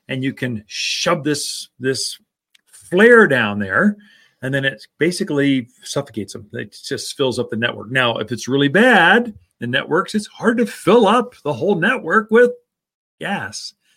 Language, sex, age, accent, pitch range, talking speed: English, male, 40-59, American, 140-210 Hz, 165 wpm